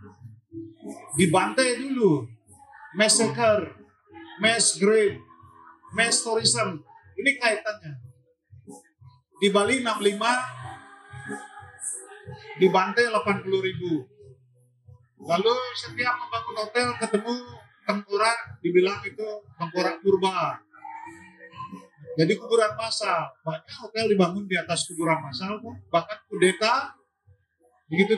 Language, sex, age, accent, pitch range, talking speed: Indonesian, male, 40-59, native, 165-240 Hz, 85 wpm